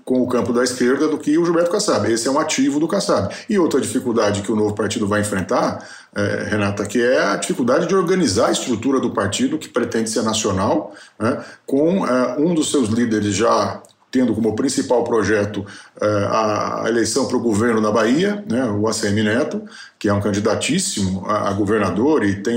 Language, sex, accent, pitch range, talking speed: Portuguese, male, Brazilian, 105-145 Hz, 190 wpm